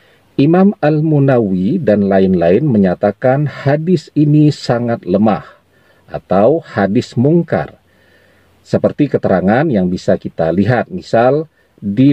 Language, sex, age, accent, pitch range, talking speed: Indonesian, male, 40-59, native, 95-150 Hz, 100 wpm